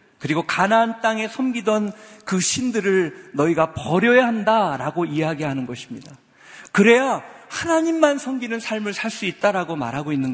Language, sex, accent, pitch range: Korean, male, native, 165-230 Hz